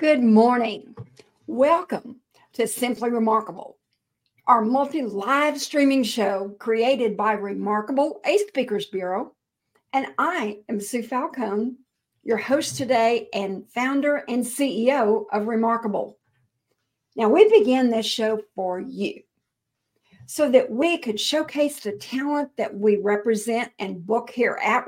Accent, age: American, 60-79